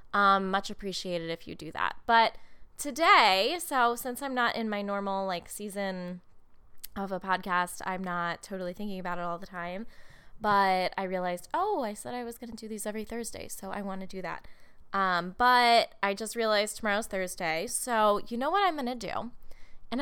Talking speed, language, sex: 200 wpm, English, female